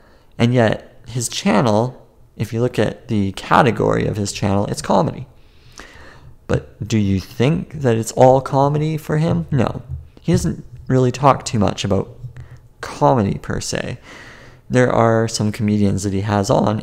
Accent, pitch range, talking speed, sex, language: American, 105-130 Hz, 155 wpm, male, English